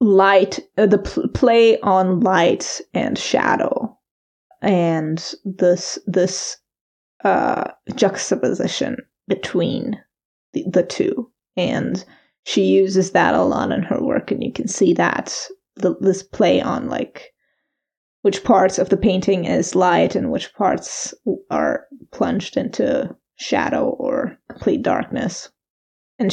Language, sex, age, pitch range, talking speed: English, female, 20-39, 190-265 Hz, 120 wpm